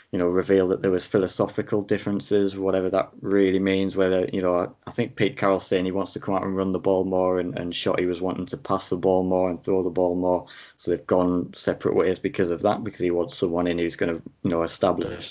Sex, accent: male, British